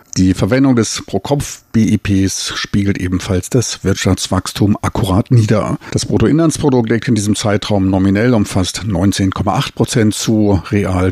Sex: male